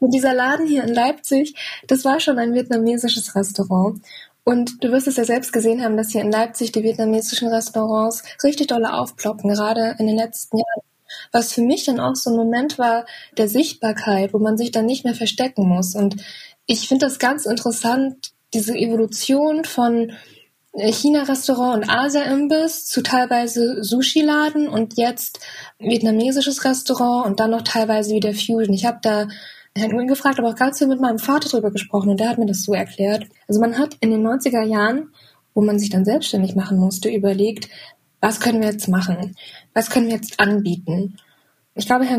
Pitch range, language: 210-250 Hz, German